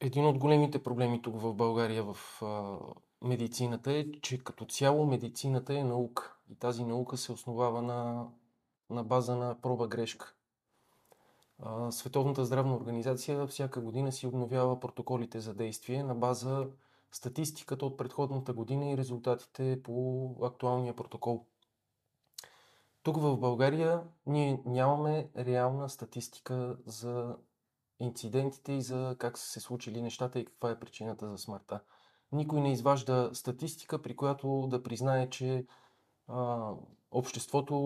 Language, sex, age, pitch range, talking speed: Bulgarian, male, 20-39, 120-140 Hz, 125 wpm